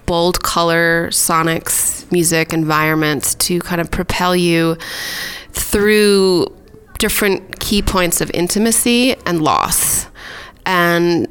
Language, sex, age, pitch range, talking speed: English, female, 20-39, 160-190 Hz, 100 wpm